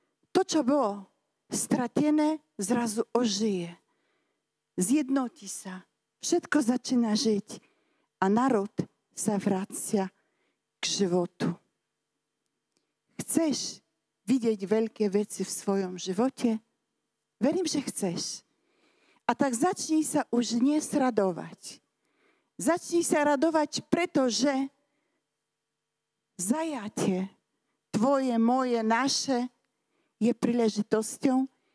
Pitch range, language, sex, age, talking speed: 220-295 Hz, Slovak, female, 50-69, 85 wpm